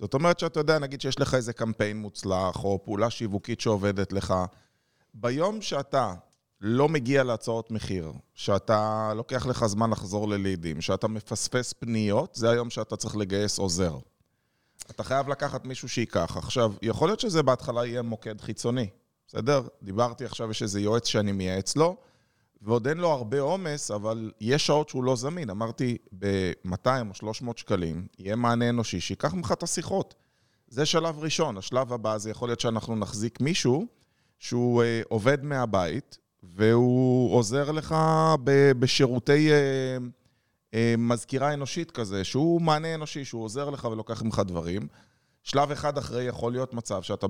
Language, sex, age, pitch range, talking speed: Hebrew, male, 20-39, 105-135 Hz, 155 wpm